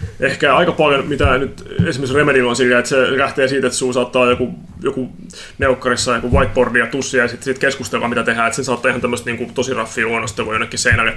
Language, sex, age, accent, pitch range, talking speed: Finnish, male, 30-49, native, 115-130 Hz, 205 wpm